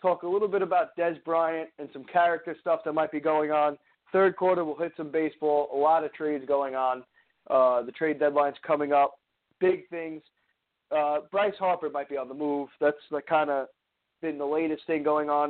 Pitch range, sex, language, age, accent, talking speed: 135-170 Hz, male, English, 20-39, American, 205 wpm